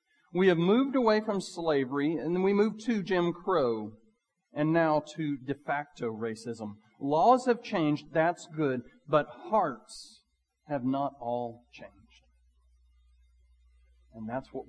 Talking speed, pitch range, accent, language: 135 wpm, 120-160 Hz, American, English